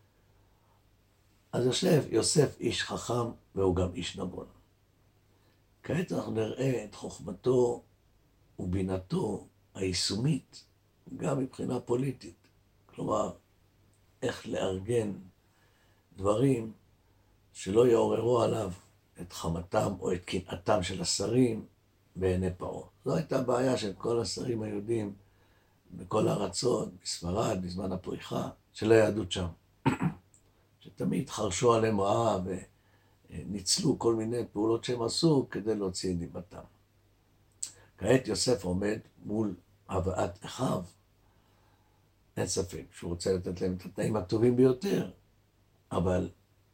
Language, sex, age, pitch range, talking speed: Hebrew, male, 60-79, 95-110 Hz, 105 wpm